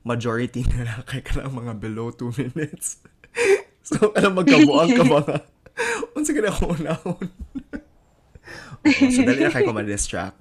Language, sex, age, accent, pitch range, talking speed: Filipino, male, 20-39, native, 105-130 Hz, 135 wpm